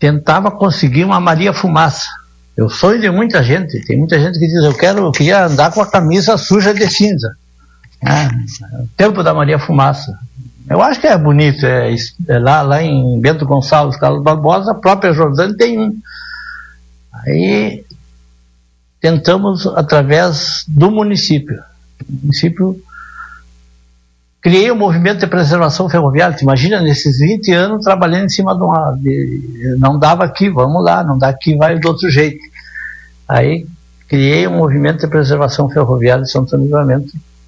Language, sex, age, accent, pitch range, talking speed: Portuguese, male, 60-79, Brazilian, 130-175 Hz, 150 wpm